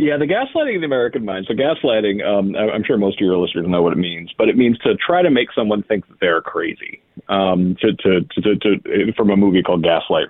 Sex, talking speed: male, 250 wpm